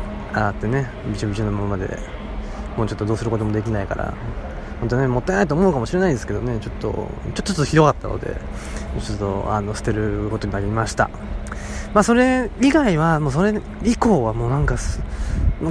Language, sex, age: Japanese, male, 20-39